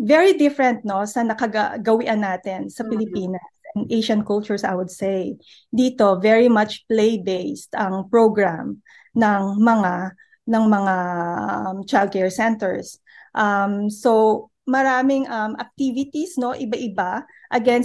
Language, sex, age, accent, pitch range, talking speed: Filipino, female, 20-39, native, 205-245 Hz, 120 wpm